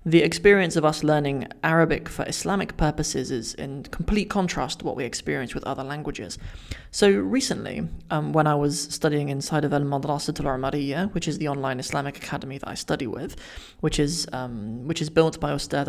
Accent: British